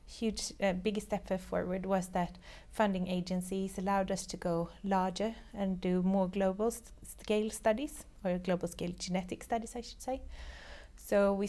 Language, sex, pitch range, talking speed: English, female, 185-205 Hz, 155 wpm